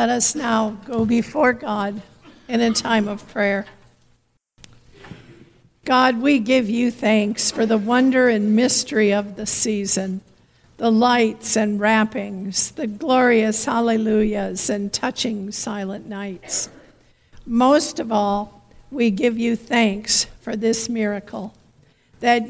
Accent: American